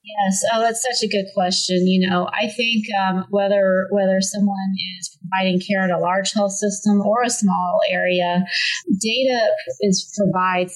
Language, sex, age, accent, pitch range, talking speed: English, female, 30-49, American, 180-215 Hz, 165 wpm